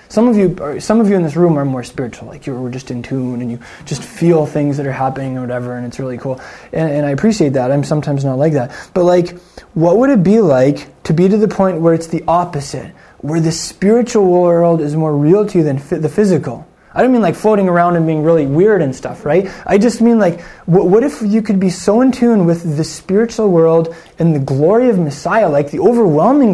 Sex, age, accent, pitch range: male, 20-39, American, 140-180 Hz